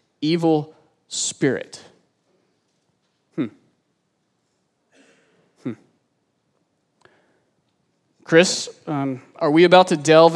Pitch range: 135-175 Hz